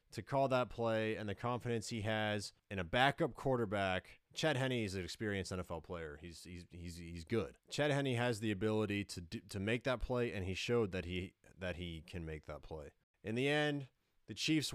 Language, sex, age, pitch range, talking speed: English, male, 30-49, 100-130 Hz, 210 wpm